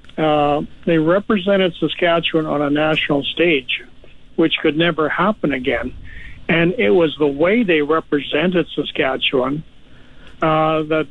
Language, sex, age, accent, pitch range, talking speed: English, male, 60-79, American, 145-170 Hz, 125 wpm